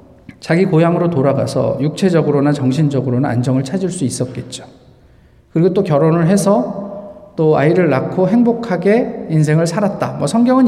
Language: Korean